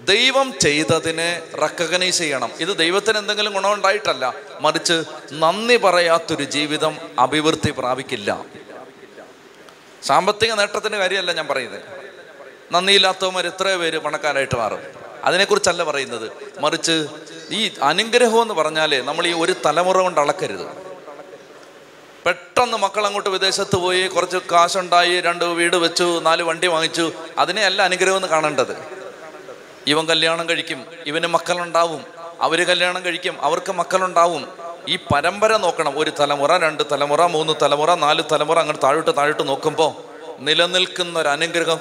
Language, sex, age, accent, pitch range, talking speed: Malayalam, male, 30-49, native, 160-190 Hz, 115 wpm